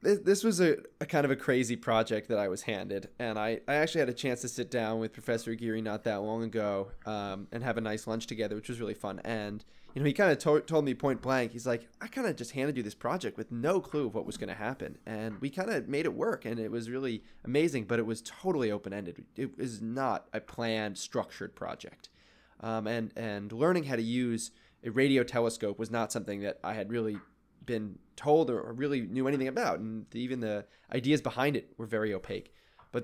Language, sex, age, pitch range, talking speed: English, male, 20-39, 110-135 Hz, 235 wpm